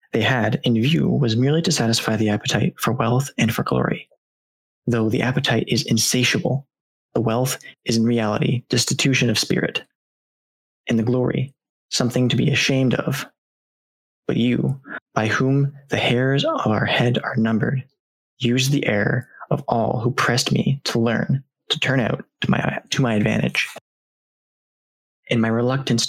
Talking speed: 155 wpm